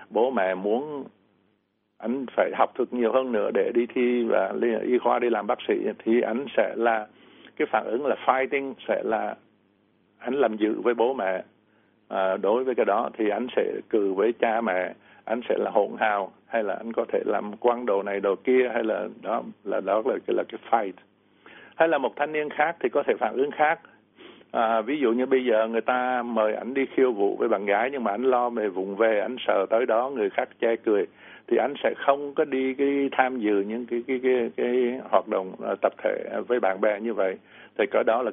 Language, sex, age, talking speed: Vietnamese, male, 60-79, 230 wpm